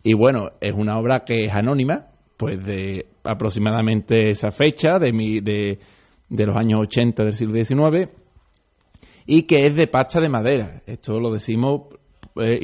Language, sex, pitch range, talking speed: Spanish, male, 110-135 Hz, 160 wpm